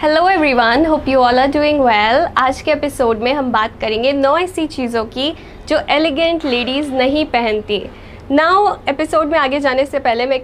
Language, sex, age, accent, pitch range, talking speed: Hindi, female, 20-39, native, 255-320 Hz, 185 wpm